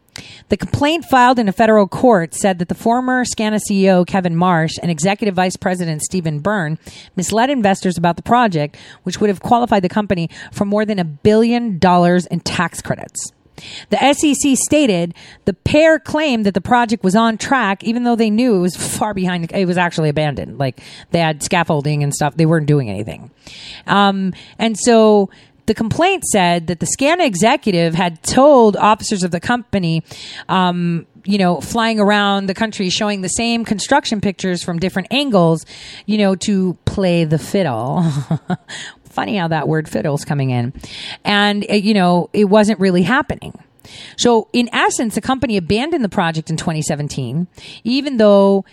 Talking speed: 170 wpm